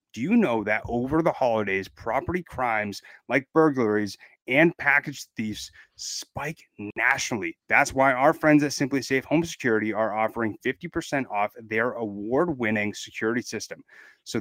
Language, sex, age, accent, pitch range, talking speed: English, male, 30-49, American, 115-140 Hz, 145 wpm